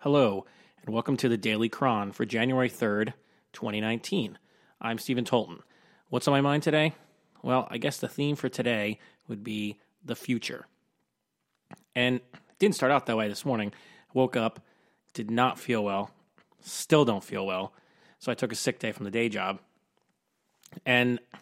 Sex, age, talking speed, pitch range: male, 30-49, 170 wpm, 110-125 Hz